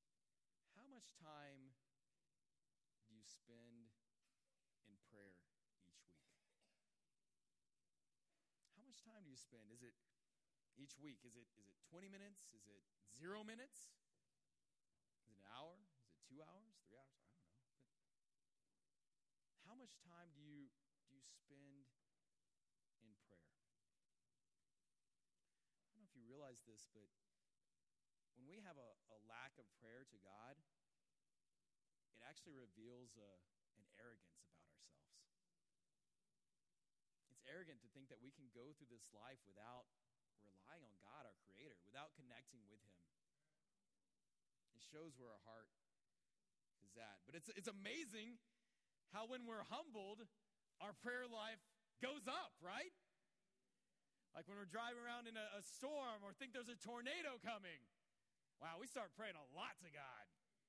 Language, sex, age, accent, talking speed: English, male, 40-59, American, 140 wpm